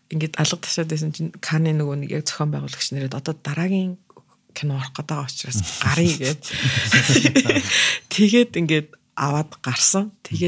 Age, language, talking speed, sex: 30-49, Russian, 90 wpm, female